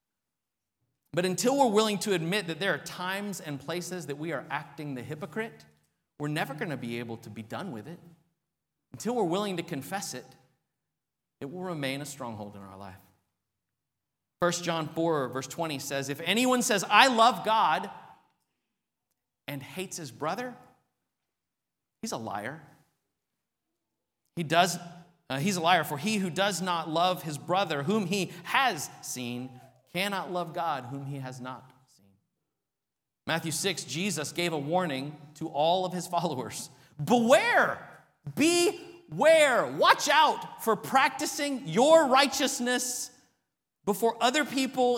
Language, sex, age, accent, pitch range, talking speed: English, male, 30-49, American, 135-195 Hz, 145 wpm